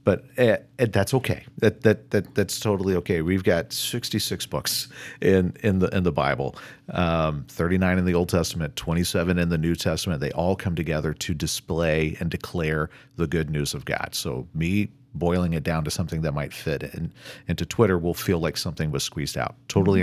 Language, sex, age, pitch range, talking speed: English, male, 40-59, 80-100 Hz, 195 wpm